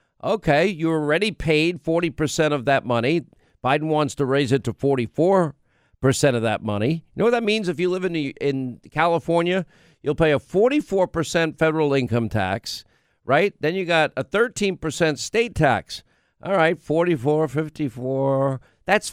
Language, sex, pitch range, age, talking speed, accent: English, male, 150-195 Hz, 50-69, 155 wpm, American